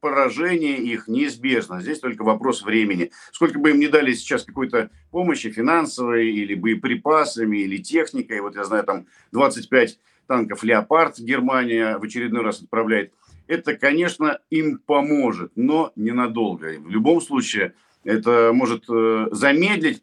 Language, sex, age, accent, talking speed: Russian, male, 50-69, native, 130 wpm